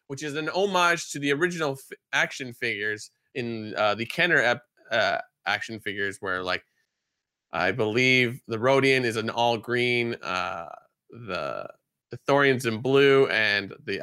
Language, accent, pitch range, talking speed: English, American, 115-150 Hz, 155 wpm